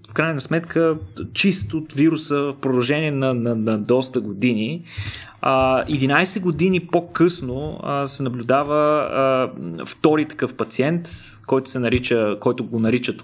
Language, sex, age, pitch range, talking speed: Bulgarian, male, 20-39, 120-150 Hz, 120 wpm